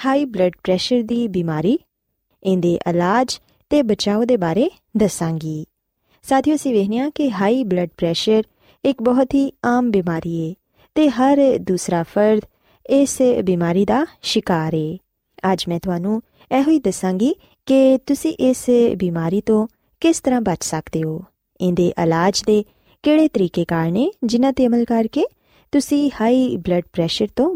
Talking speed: 150 wpm